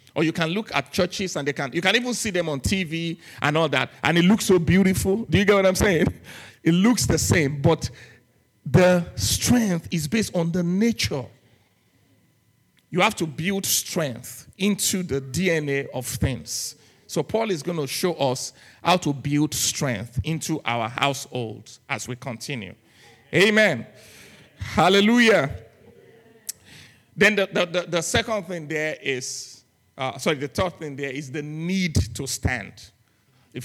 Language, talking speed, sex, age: English, 165 wpm, male, 50-69